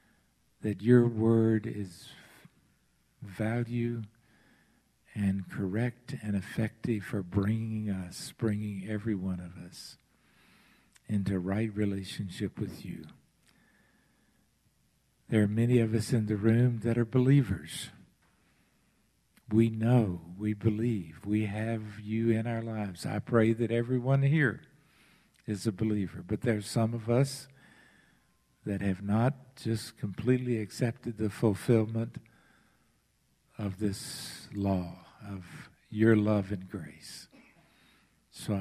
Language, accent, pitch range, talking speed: English, American, 100-115 Hz, 115 wpm